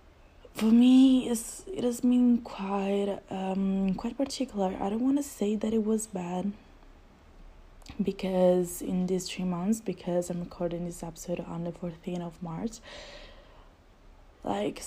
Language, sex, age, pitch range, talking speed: English, female, 20-39, 170-195 Hz, 140 wpm